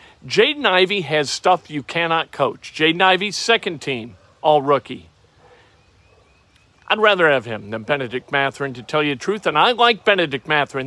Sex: male